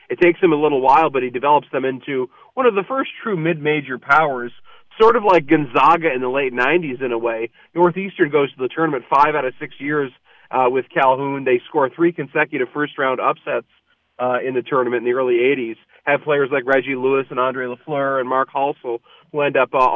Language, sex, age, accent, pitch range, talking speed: English, male, 30-49, American, 130-170 Hz, 215 wpm